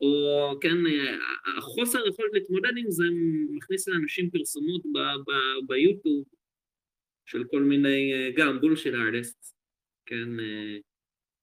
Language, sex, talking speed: Hebrew, male, 100 wpm